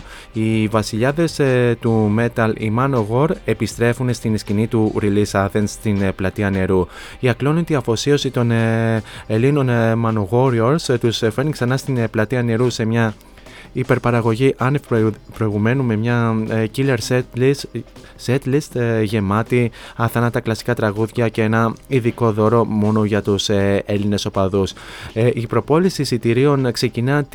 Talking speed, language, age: 125 wpm, Greek, 20-39